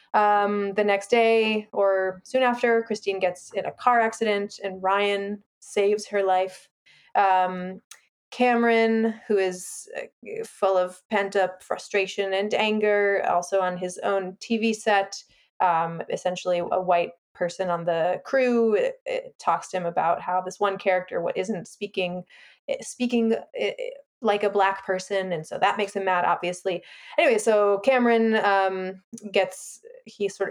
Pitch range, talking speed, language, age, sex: 190-225 Hz, 150 wpm, English, 20-39, female